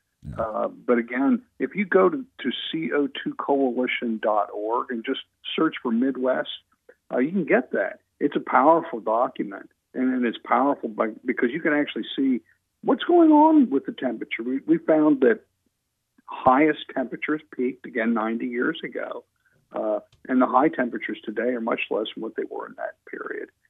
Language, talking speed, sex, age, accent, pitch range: English, 165 wpm, male, 50-69, American, 115-145 Hz